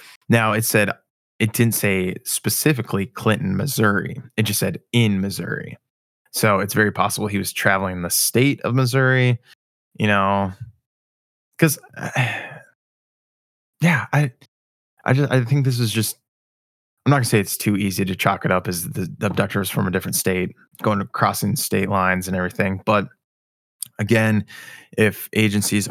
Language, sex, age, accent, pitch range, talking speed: English, male, 20-39, American, 95-120 Hz, 155 wpm